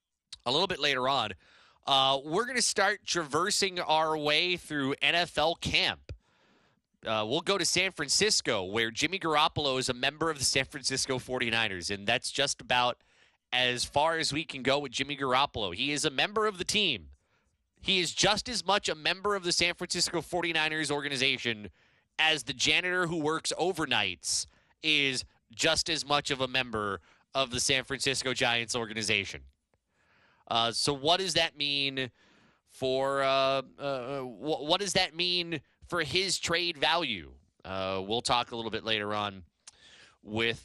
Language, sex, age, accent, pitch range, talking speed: English, male, 30-49, American, 110-160 Hz, 165 wpm